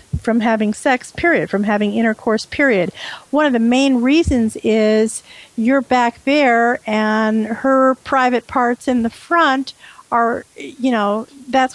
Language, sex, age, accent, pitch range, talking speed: English, female, 50-69, American, 215-255 Hz, 145 wpm